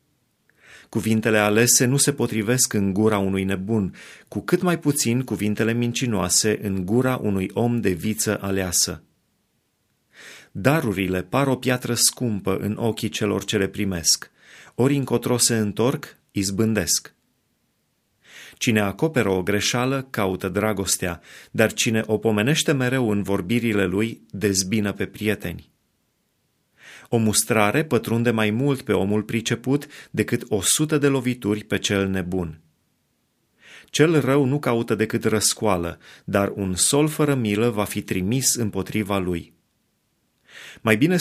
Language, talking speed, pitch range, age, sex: Romanian, 130 wpm, 100-120 Hz, 30-49, male